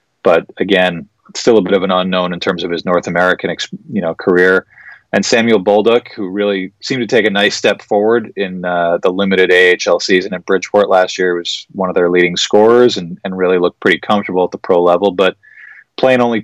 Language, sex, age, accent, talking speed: English, male, 30-49, American, 210 wpm